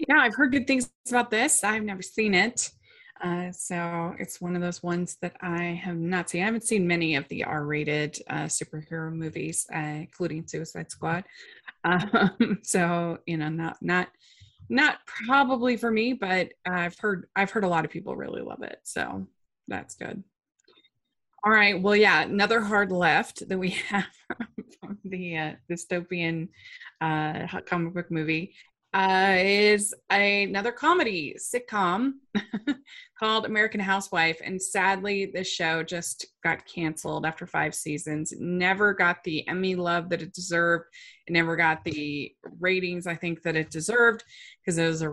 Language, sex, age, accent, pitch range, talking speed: English, female, 20-39, American, 170-210 Hz, 160 wpm